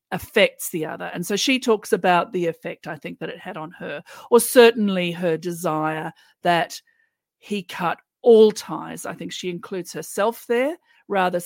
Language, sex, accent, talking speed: English, female, Australian, 175 wpm